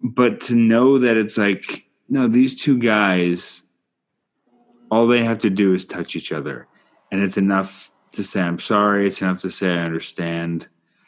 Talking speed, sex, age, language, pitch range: 175 wpm, male, 30-49, English, 90-110 Hz